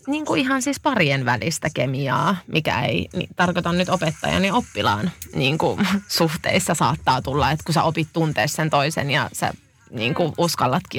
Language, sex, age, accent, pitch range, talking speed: Finnish, female, 20-39, native, 155-185 Hz, 145 wpm